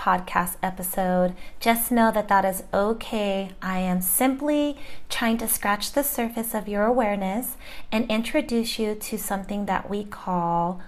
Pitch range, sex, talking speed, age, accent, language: 190-245 Hz, female, 150 wpm, 30-49, American, English